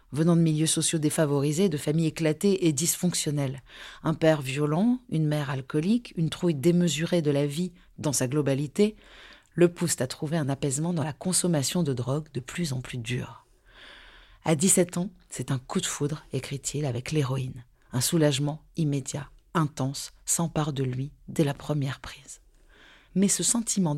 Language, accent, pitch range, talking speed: French, French, 135-170 Hz, 170 wpm